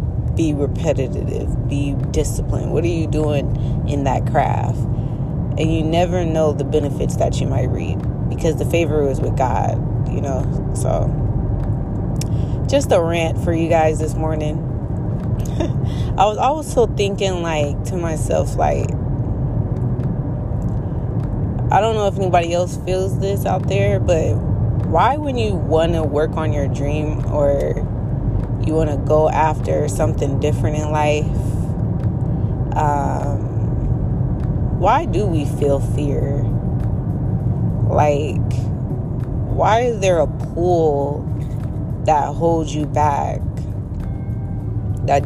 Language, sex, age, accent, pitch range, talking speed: English, female, 20-39, American, 110-145 Hz, 125 wpm